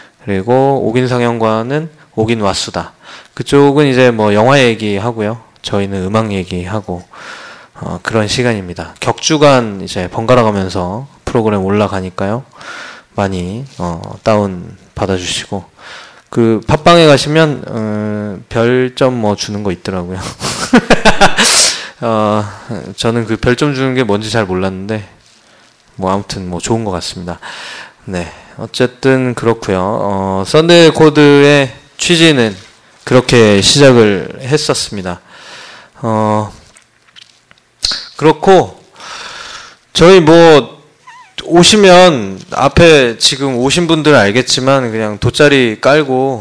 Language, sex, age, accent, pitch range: Korean, male, 20-39, native, 95-130 Hz